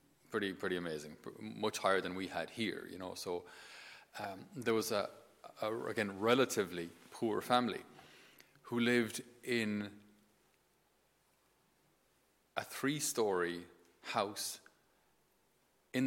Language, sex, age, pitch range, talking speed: English, male, 30-49, 95-120 Hz, 105 wpm